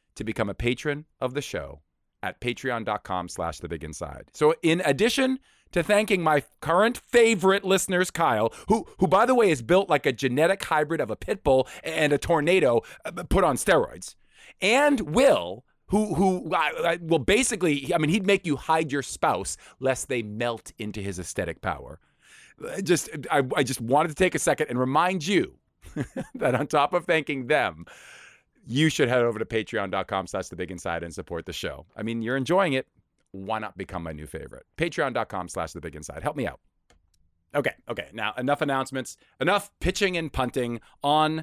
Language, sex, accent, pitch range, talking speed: English, male, American, 105-160 Hz, 180 wpm